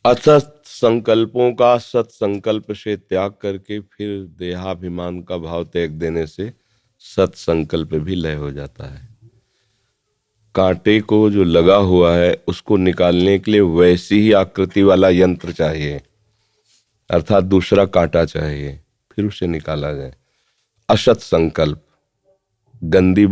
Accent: native